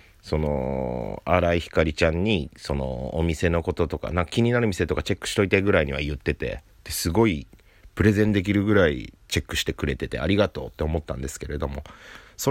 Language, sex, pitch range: Japanese, male, 75-100 Hz